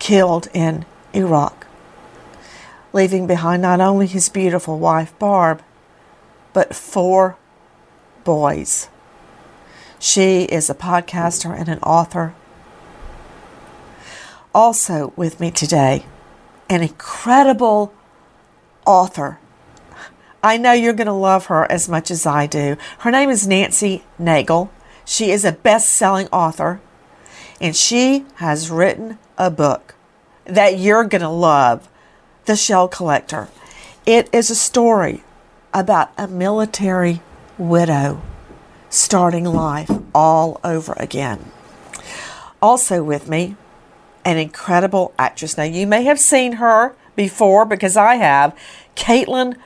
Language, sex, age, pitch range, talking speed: English, female, 50-69, 165-215 Hz, 115 wpm